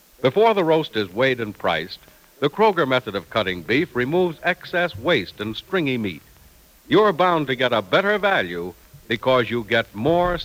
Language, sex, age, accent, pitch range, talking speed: English, male, 60-79, American, 105-160 Hz, 170 wpm